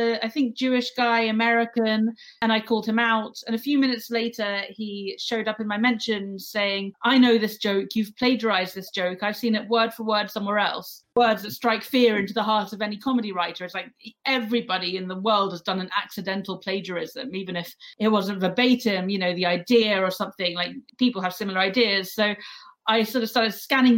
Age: 30-49